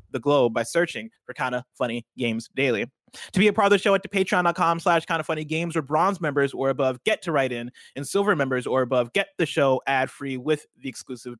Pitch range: 130-170 Hz